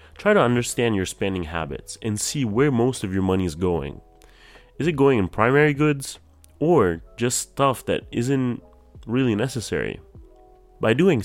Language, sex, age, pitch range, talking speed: English, male, 30-49, 90-125 Hz, 160 wpm